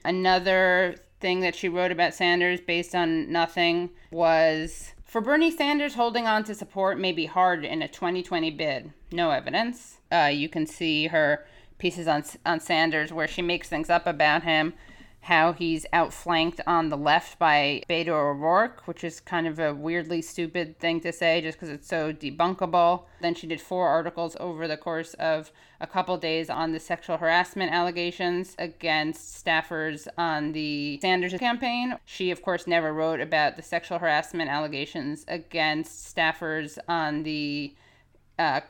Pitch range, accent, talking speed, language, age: 160-185 Hz, American, 165 wpm, English, 30-49